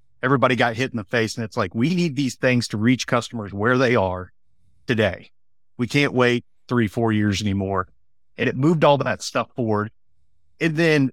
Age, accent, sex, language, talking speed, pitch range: 30-49, American, male, English, 195 wpm, 115-145 Hz